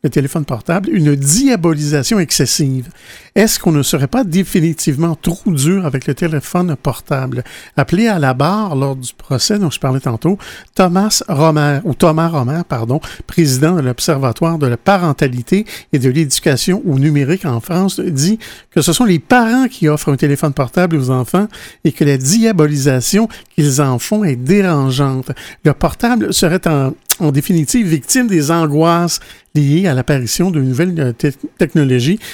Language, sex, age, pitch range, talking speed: French, male, 50-69, 135-180 Hz, 160 wpm